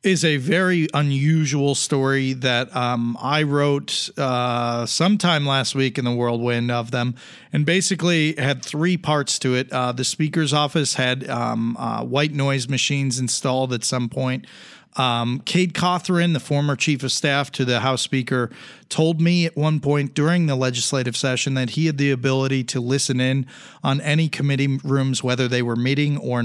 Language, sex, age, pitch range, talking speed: English, male, 40-59, 130-165 Hz, 175 wpm